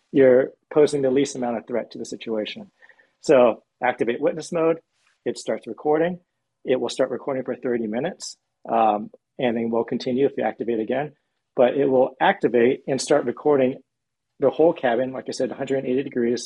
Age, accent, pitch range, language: 40-59, American, 115-135 Hz, English